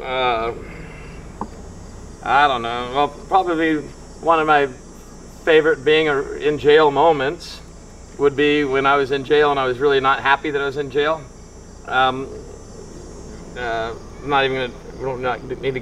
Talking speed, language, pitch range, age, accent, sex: 150 wpm, English, 140-190 Hz, 40-59, American, male